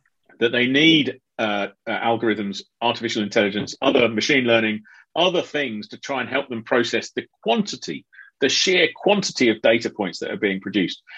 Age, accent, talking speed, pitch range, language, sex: 40-59, British, 165 wpm, 120-170 Hz, English, male